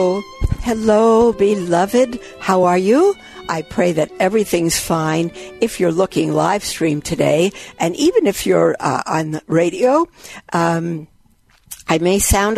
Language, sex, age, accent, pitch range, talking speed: English, female, 60-79, American, 165-215 Hz, 135 wpm